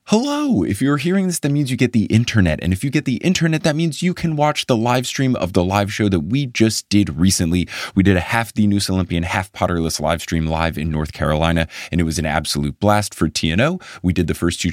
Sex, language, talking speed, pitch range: male, English, 255 wpm, 90-130 Hz